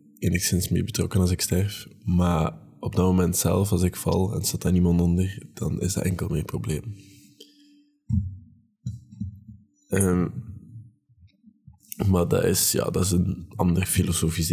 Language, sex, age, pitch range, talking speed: Dutch, male, 20-39, 90-105 Hz, 145 wpm